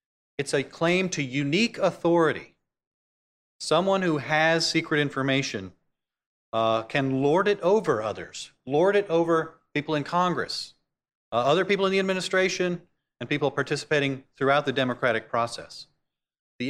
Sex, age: male, 40-59